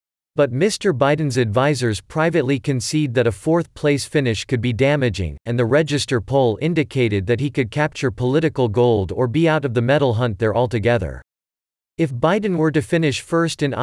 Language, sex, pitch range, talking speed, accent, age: English, male, 115-150 Hz, 175 wpm, American, 40-59